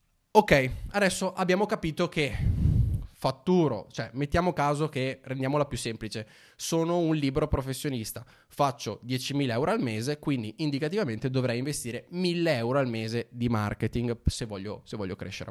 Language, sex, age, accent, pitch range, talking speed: Italian, male, 20-39, native, 115-150 Hz, 145 wpm